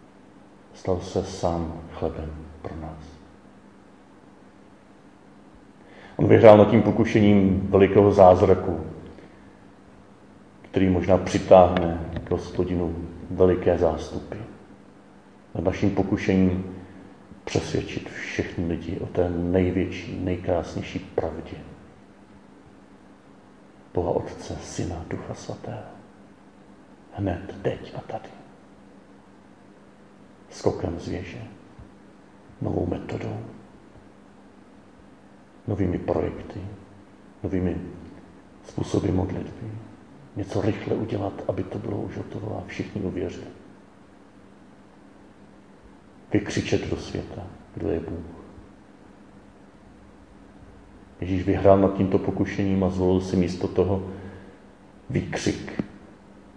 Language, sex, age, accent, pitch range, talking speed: Czech, male, 40-59, native, 90-100 Hz, 85 wpm